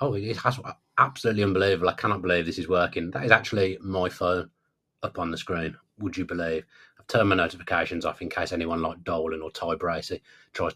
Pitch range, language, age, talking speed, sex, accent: 85-125 Hz, English, 30-49, 200 wpm, male, British